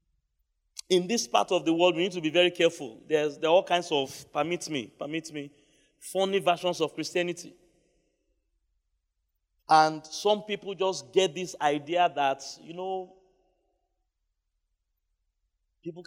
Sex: male